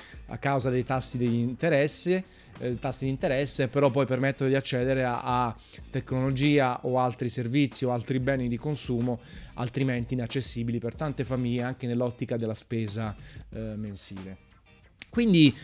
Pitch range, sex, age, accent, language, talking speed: 120-150 Hz, male, 30-49, native, Italian, 145 wpm